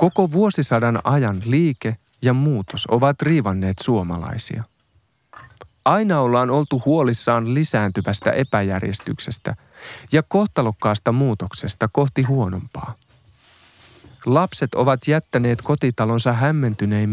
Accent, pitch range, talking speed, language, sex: native, 105-140 Hz, 90 wpm, Finnish, male